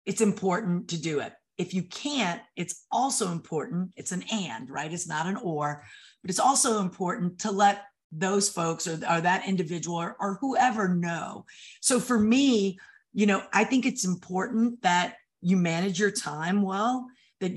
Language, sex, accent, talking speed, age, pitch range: English, female, American, 175 wpm, 40-59, 180-230 Hz